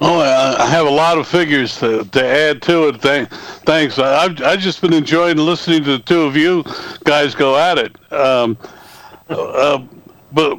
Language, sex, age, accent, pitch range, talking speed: English, male, 60-79, American, 130-170 Hz, 175 wpm